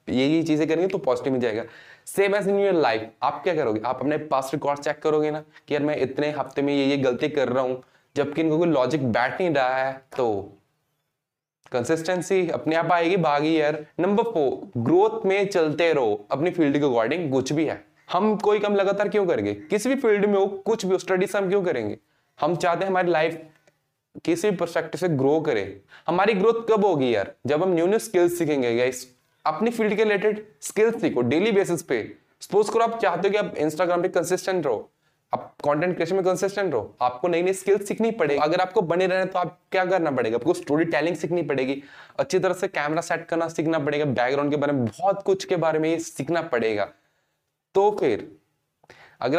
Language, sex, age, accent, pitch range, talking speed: Hindi, male, 20-39, native, 140-190 Hz, 115 wpm